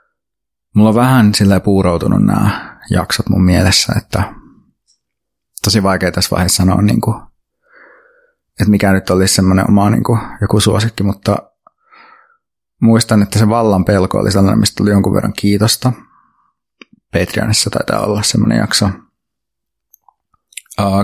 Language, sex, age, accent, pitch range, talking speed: Finnish, male, 30-49, native, 95-115 Hz, 130 wpm